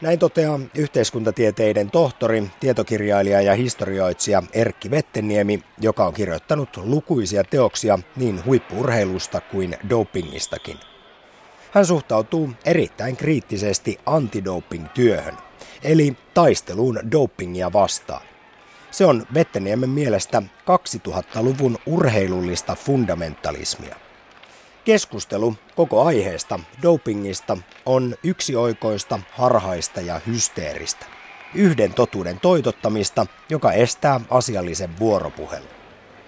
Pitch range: 100-140 Hz